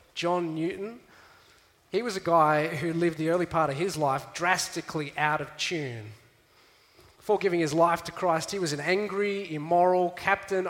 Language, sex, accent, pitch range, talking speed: English, male, Australian, 130-175 Hz, 170 wpm